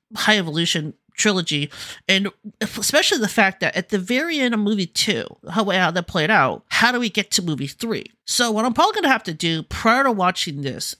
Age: 30-49